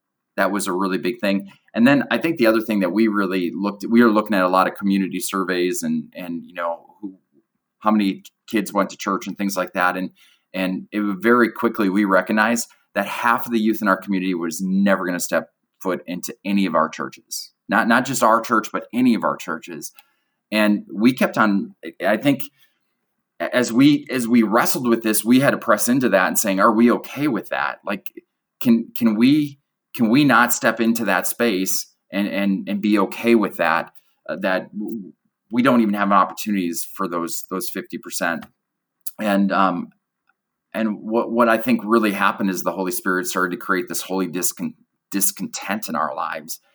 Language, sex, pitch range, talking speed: English, male, 95-115 Hz, 200 wpm